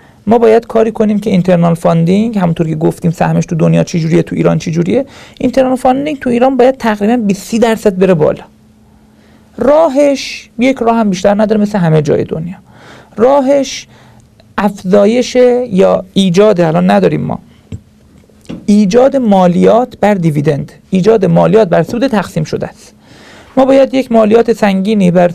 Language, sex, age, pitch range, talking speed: Persian, male, 40-59, 190-245 Hz, 145 wpm